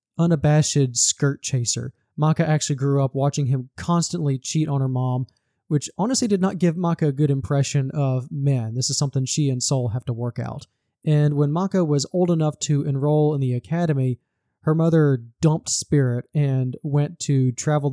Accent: American